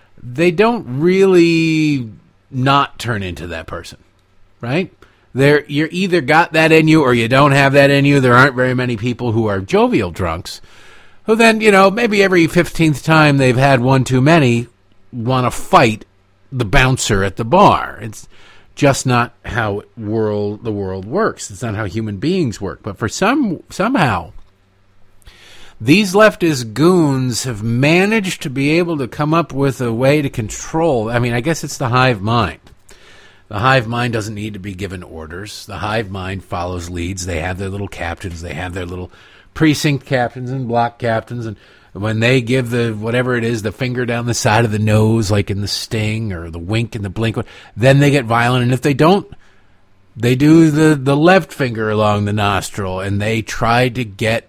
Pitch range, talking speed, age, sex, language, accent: 100-140 Hz, 190 wpm, 50-69, male, English, American